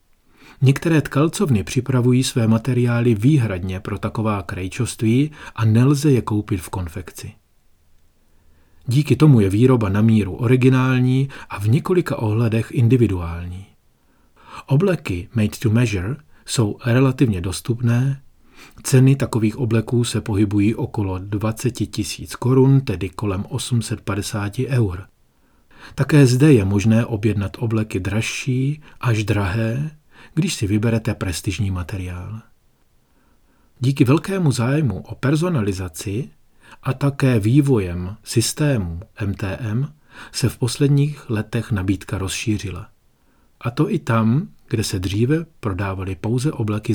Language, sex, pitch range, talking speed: Czech, male, 105-130 Hz, 110 wpm